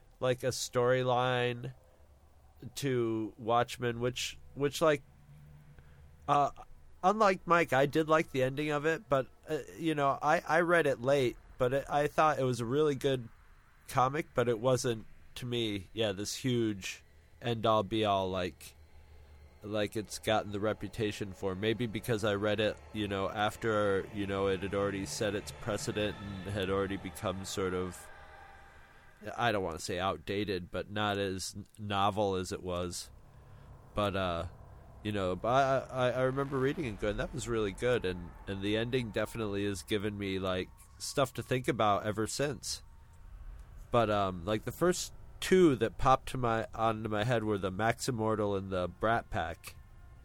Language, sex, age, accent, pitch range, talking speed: English, male, 30-49, American, 95-125 Hz, 170 wpm